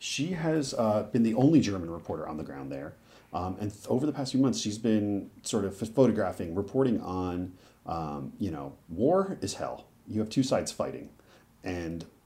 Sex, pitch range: male, 85-110 Hz